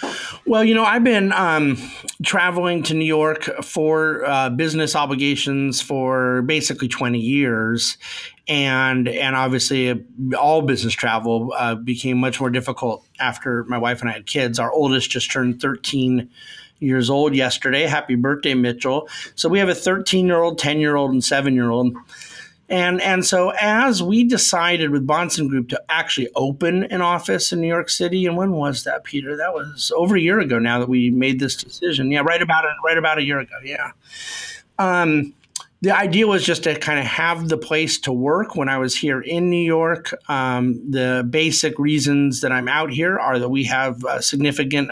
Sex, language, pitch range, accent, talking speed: male, English, 130-170 Hz, American, 180 wpm